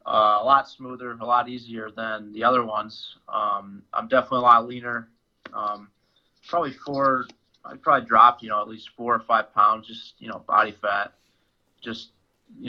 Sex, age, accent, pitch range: male, 20-39, American, 105-120 Hz